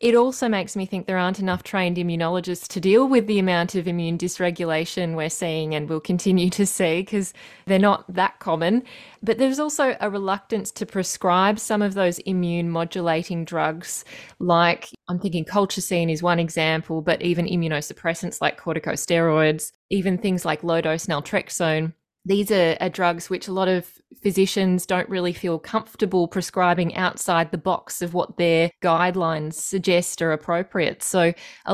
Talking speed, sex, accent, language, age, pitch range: 165 wpm, female, Australian, English, 20-39, 165-190 Hz